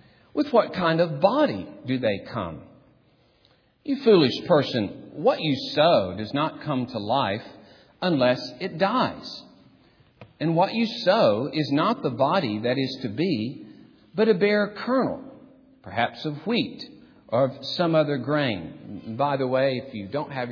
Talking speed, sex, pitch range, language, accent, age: 155 wpm, male, 125-190 Hz, English, American, 50-69